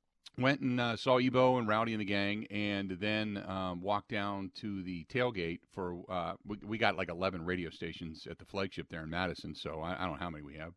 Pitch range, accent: 90-110 Hz, American